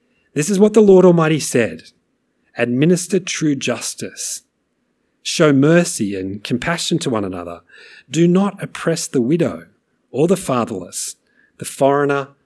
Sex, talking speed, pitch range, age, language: male, 130 wpm, 125-170 Hz, 40-59, English